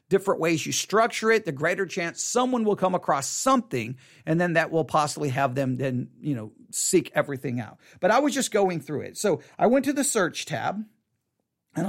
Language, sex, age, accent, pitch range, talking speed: English, male, 40-59, American, 150-225 Hz, 205 wpm